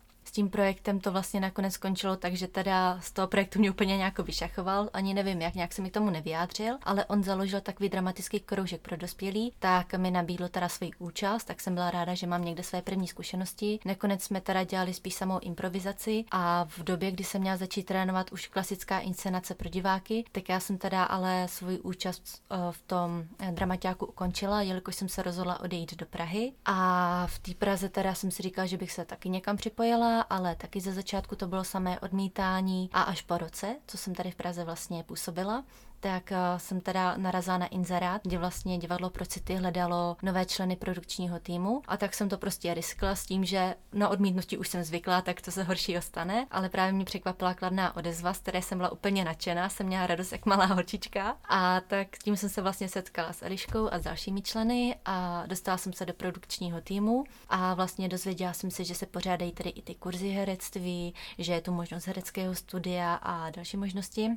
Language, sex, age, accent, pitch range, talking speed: Czech, female, 20-39, native, 180-195 Hz, 200 wpm